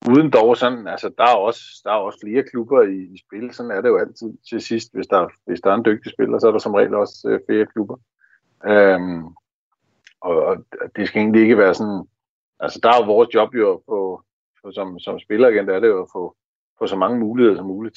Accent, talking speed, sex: native, 240 wpm, male